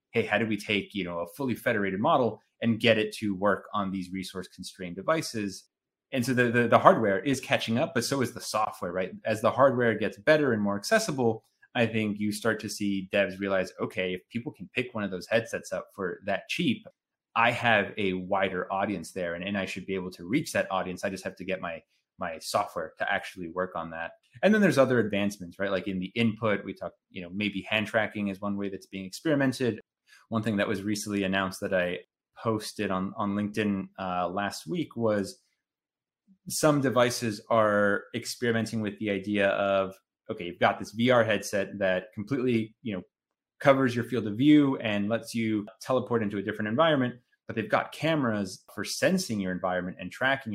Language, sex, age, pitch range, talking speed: English, male, 30-49, 95-120 Hz, 205 wpm